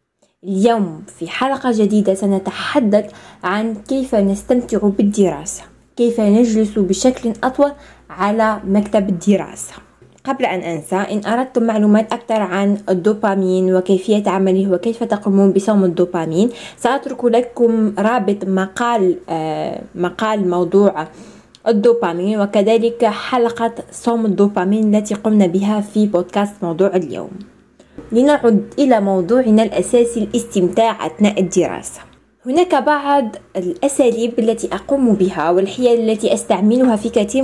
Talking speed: 105 wpm